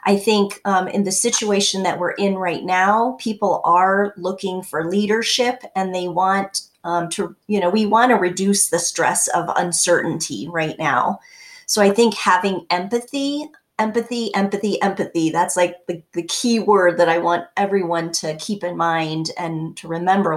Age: 30-49